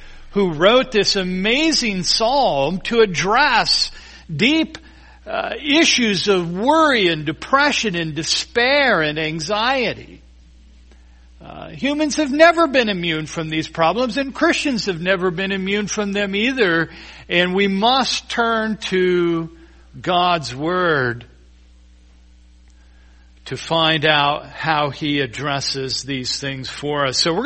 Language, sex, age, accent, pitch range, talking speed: English, male, 50-69, American, 145-220 Hz, 120 wpm